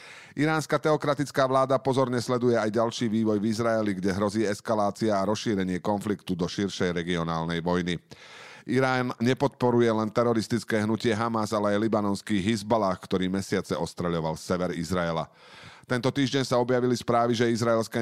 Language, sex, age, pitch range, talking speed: Slovak, male, 40-59, 100-125 Hz, 140 wpm